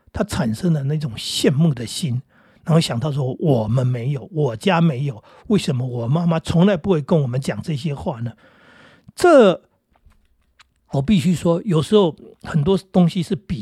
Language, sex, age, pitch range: Chinese, male, 60-79, 150-210 Hz